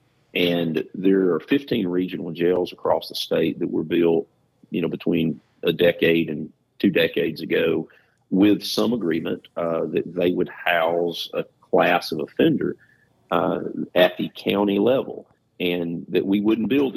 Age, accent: 50-69, American